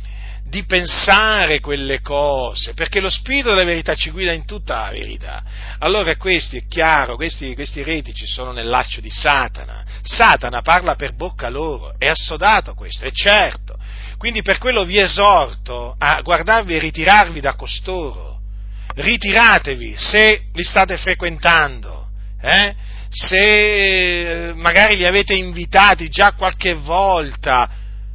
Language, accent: Italian, native